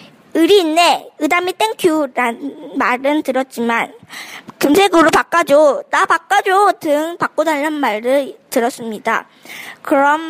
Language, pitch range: Korean, 255-320 Hz